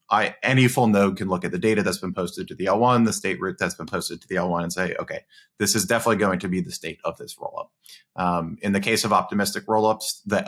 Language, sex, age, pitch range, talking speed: English, male, 30-49, 90-115 Hz, 265 wpm